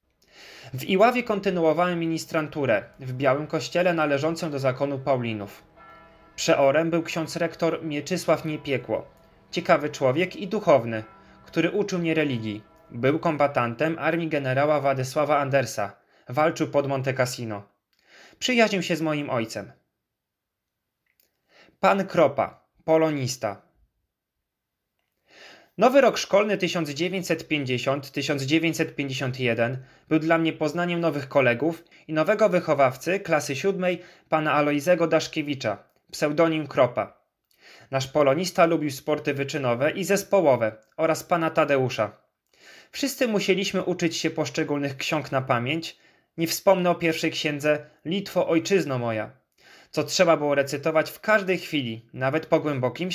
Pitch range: 140-170 Hz